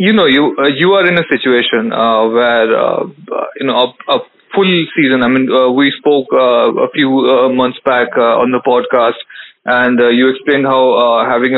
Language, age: English, 20-39